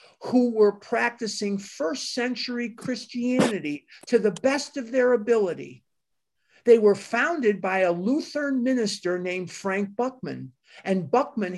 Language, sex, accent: English, male, American